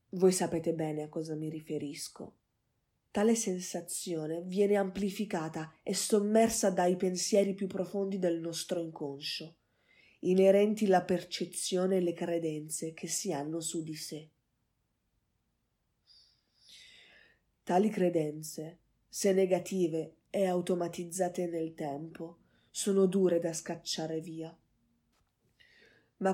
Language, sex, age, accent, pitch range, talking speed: Italian, female, 20-39, native, 160-195 Hz, 105 wpm